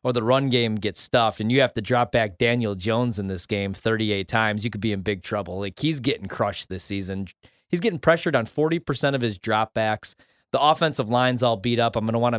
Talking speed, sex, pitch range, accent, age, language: 235 wpm, male, 105-135 Hz, American, 30-49, English